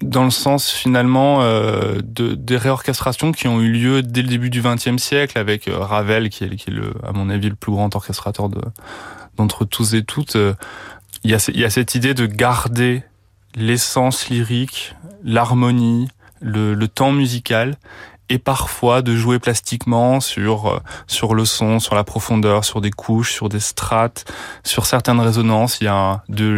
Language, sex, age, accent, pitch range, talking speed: French, male, 20-39, French, 105-120 Hz, 180 wpm